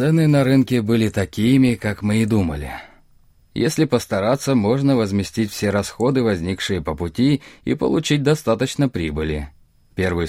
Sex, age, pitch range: male, 30-49, 85-130 Hz